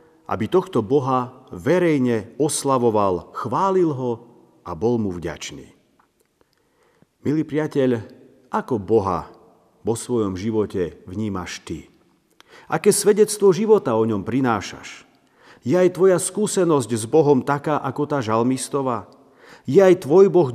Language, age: Slovak, 50-69